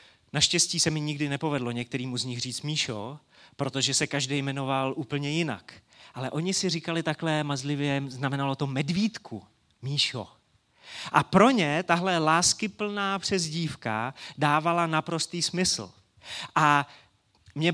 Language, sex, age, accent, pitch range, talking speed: Czech, male, 30-49, native, 140-190 Hz, 125 wpm